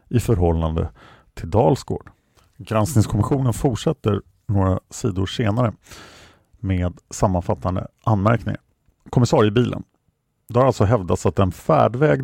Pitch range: 90-125 Hz